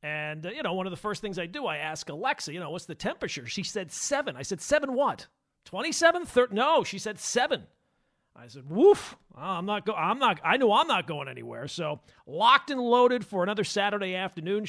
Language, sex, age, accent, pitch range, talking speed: English, male, 40-59, American, 155-215 Hz, 215 wpm